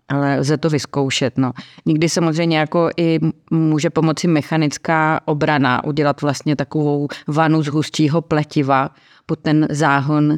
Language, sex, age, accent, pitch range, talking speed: Czech, female, 30-49, native, 135-155 Hz, 135 wpm